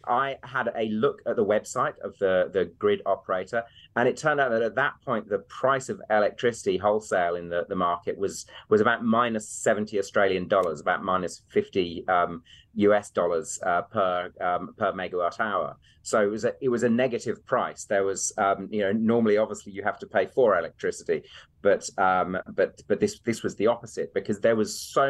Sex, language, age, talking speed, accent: male, English, 30-49, 200 wpm, British